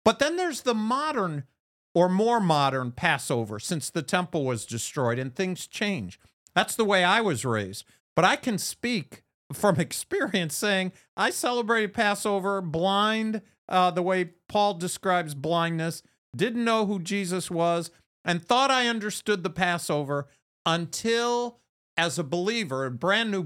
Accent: American